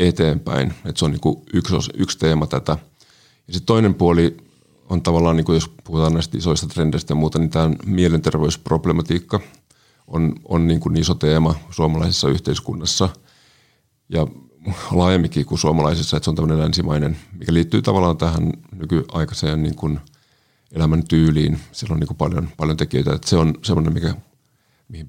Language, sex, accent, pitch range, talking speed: Finnish, male, native, 80-90 Hz, 140 wpm